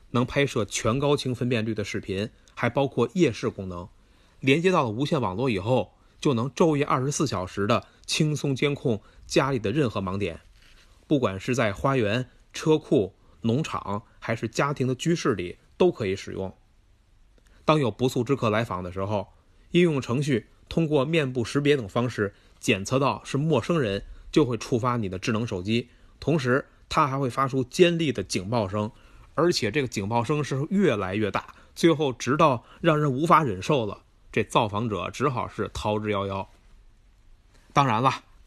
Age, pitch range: 30-49, 105-140 Hz